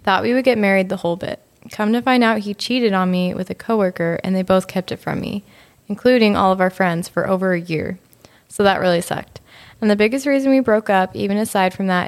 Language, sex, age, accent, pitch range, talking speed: English, female, 20-39, American, 185-215 Hz, 250 wpm